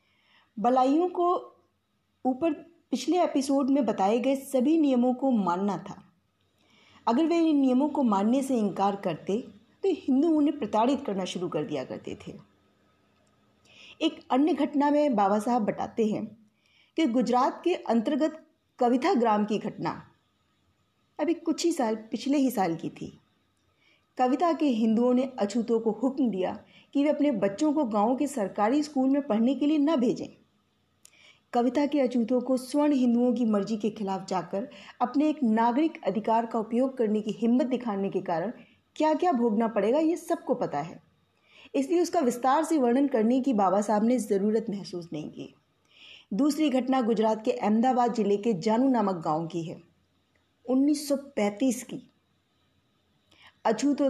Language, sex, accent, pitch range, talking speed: Hindi, female, native, 205-285 Hz, 155 wpm